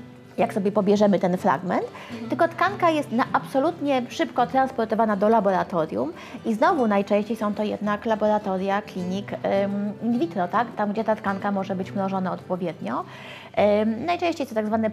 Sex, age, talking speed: female, 20-39, 150 wpm